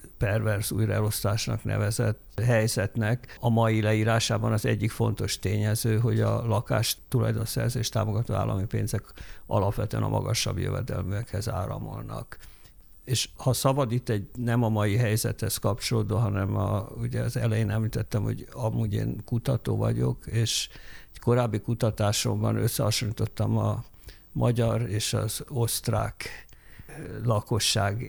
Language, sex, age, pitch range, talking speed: Hungarian, male, 50-69, 105-120 Hz, 115 wpm